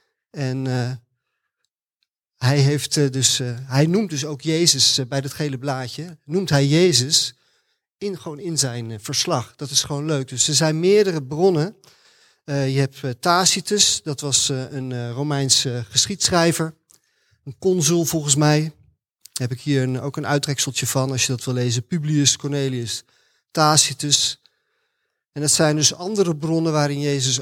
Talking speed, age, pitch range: 165 wpm, 40-59, 135-170 Hz